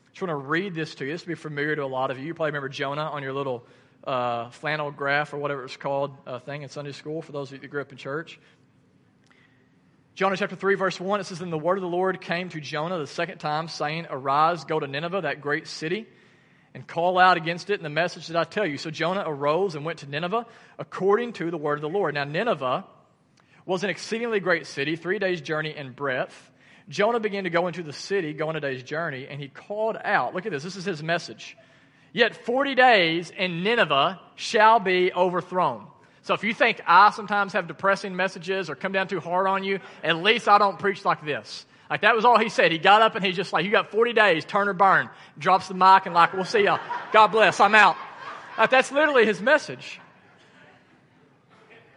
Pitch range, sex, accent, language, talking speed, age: 150-200 Hz, male, American, English, 230 wpm, 40-59